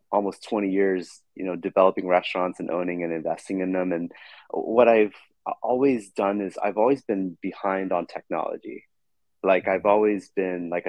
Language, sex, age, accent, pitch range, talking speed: English, male, 30-49, American, 90-110 Hz, 165 wpm